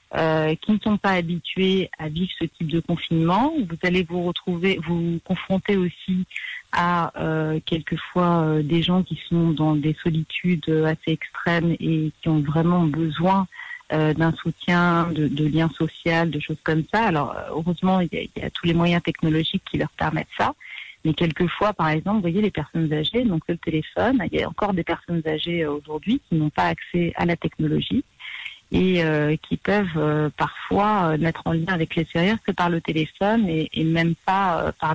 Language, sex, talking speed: French, female, 195 wpm